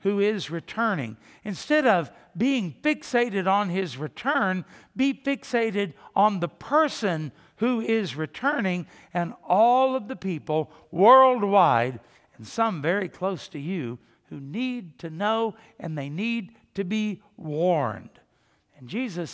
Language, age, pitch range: English, 60-79, 155-235 Hz